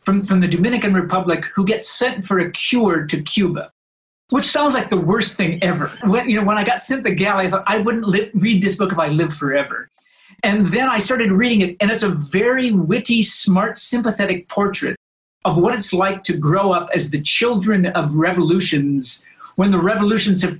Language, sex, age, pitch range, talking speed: English, male, 50-69, 175-215 Hz, 205 wpm